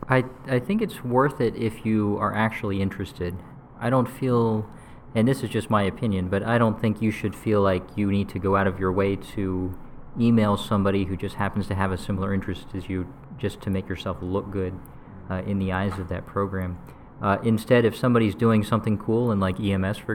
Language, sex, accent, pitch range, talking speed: English, male, American, 95-115 Hz, 215 wpm